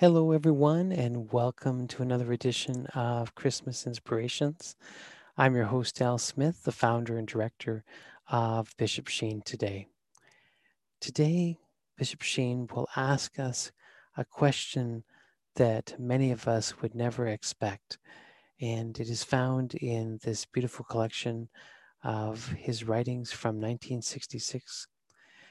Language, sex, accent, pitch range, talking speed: English, male, American, 115-135 Hz, 120 wpm